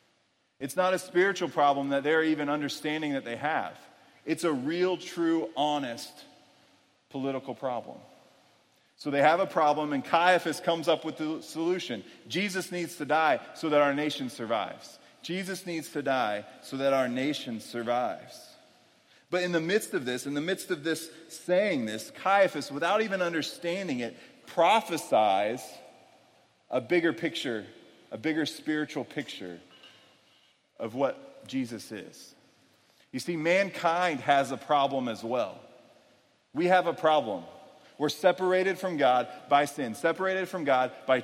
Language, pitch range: English, 140-180 Hz